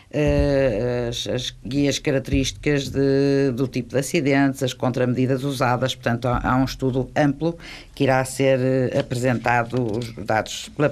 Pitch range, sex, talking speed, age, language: 130-150 Hz, female, 130 wpm, 50-69, Portuguese